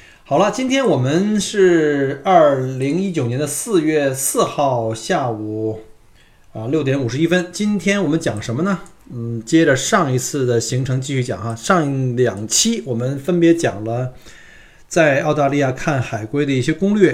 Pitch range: 120-160 Hz